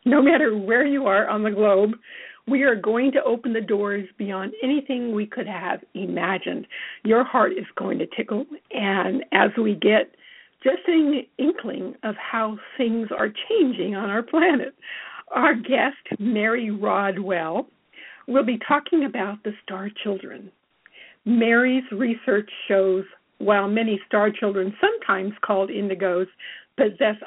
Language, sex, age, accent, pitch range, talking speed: English, female, 50-69, American, 200-250 Hz, 140 wpm